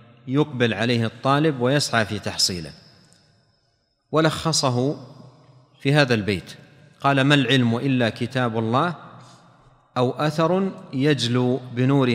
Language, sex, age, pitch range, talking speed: Arabic, male, 40-59, 120-150 Hz, 100 wpm